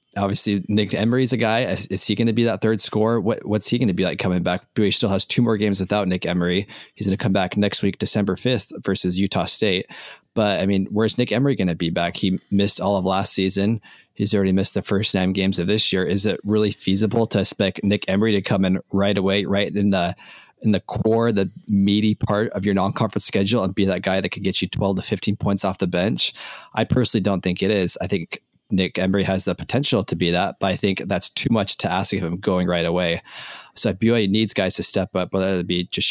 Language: English